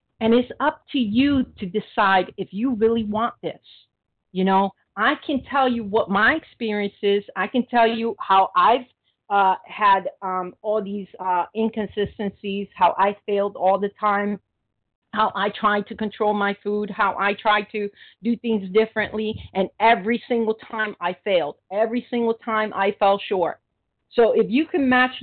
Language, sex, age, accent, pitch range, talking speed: English, female, 50-69, American, 195-230 Hz, 170 wpm